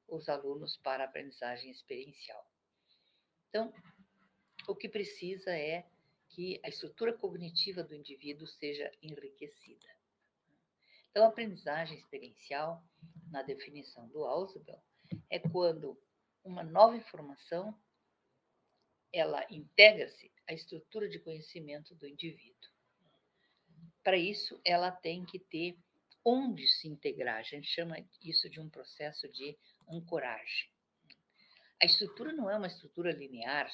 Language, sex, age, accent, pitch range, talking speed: Portuguese, female, 50-69, Brazilian, 150-215 Hz, 115 wpm